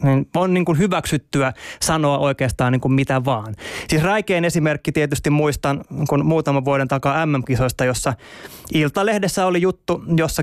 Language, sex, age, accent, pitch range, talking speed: Finnish, male, 20-39, native, 140-175 Hz, 140 wpm